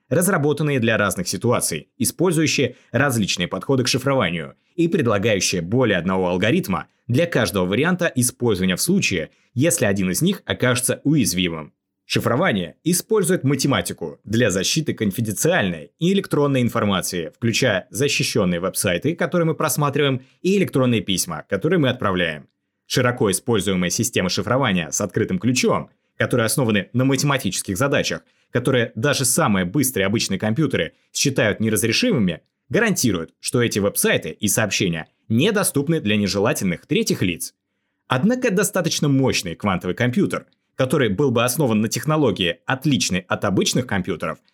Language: Russian